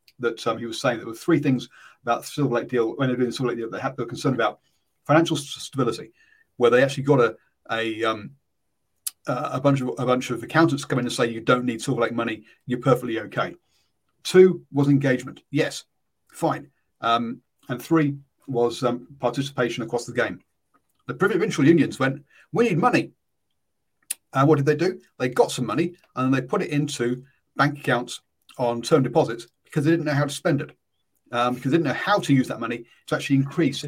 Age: 40-59